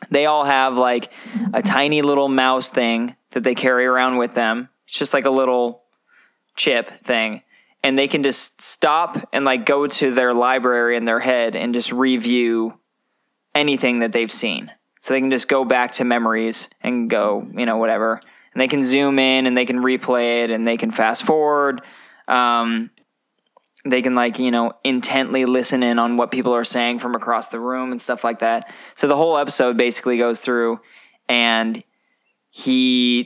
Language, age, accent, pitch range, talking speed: English, 20-39, American, 115-130 Hz, 185 wpm